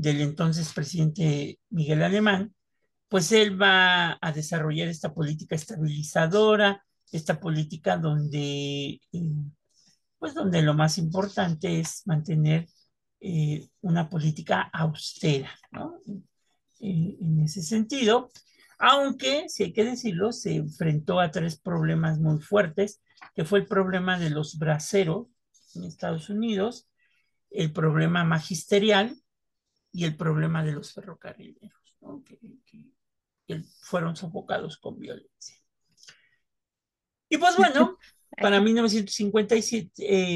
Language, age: Spanish, 50-69